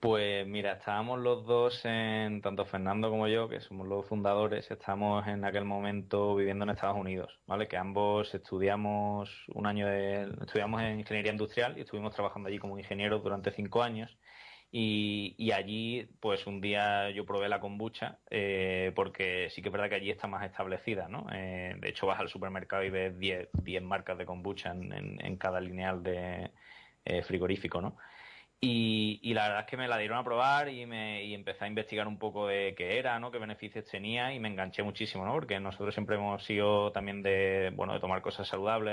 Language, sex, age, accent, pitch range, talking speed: Spanish, male, 20-39, Spanish, 95-110 Hz, 195 wpm